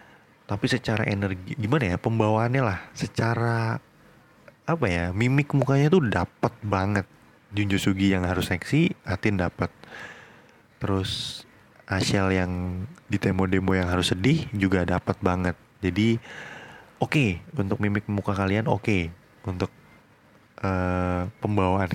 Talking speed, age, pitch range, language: 120 wpm, 20-39, 95-130 Hz, Indonesian